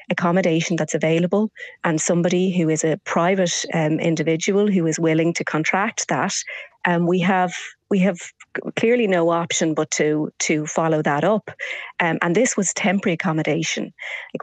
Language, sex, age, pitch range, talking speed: English, female, 30-49, 160-185 Hz, 160 wpm